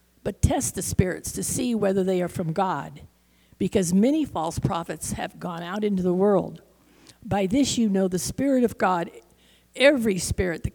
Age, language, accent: 50-69, English, American